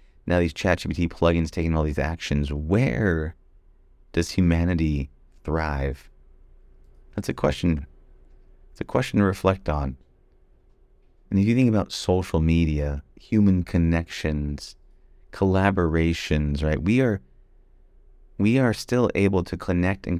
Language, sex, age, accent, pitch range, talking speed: English, male, 30-49, American, 70-95 Hz, 120 wpm